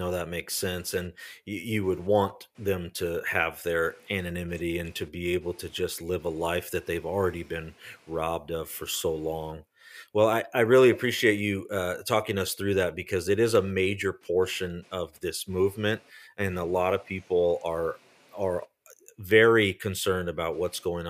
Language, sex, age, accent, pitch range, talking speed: English, male, 30-49, American, 90-115 Hz, 180 wpm